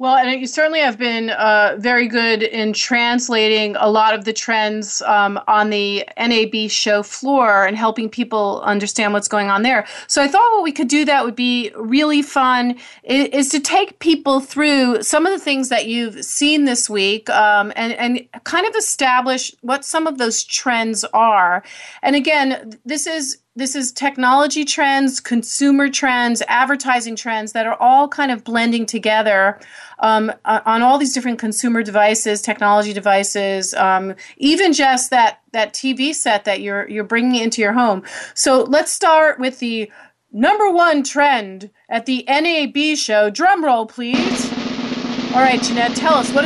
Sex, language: female, English